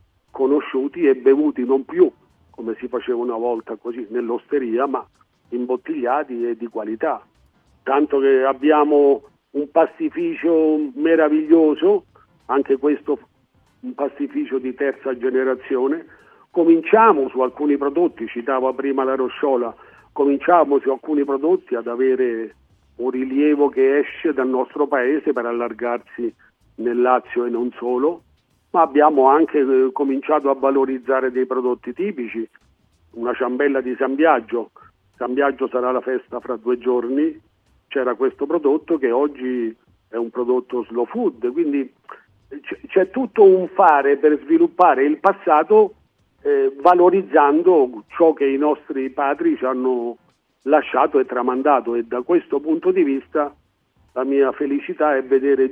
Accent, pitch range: native, 125-165 Hz